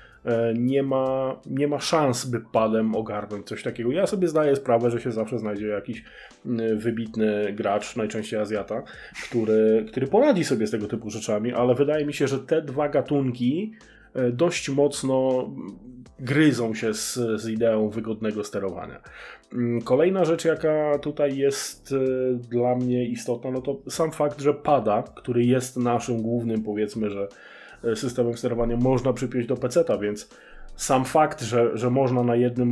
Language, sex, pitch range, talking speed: Polish, male, 110-135 Hz, 150 wpm